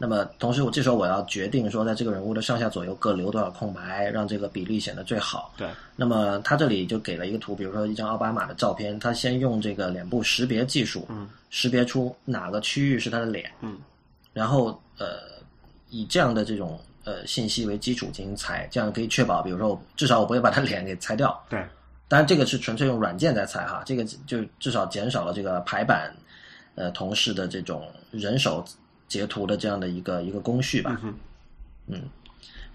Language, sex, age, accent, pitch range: Chinese, male, 20-39, native, 100-120 Hz